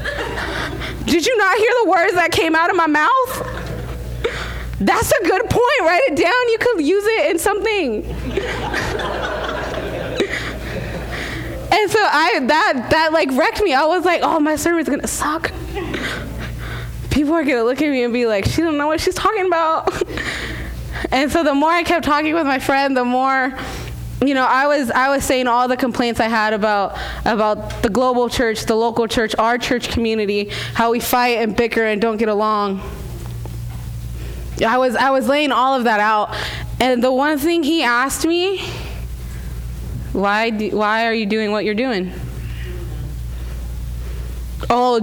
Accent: American